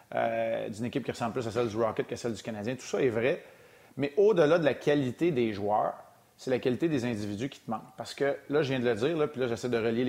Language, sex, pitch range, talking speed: French, male, 120-150 Hz, 280 wpm